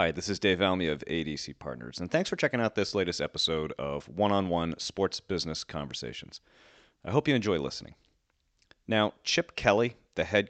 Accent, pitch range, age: American, 80-115 Hz, 30-49